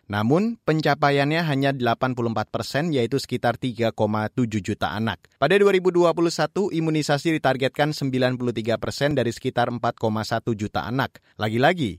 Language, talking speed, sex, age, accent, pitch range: Indonesian, 110 wpm, male, 30-49, native, 120-155 Hz